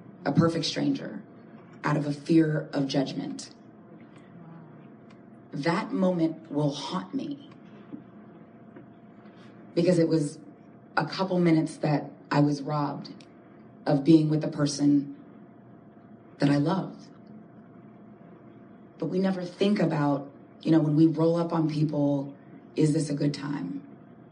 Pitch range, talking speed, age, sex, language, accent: 145-180 Hz, 125 wpm, 30-49, female, English, American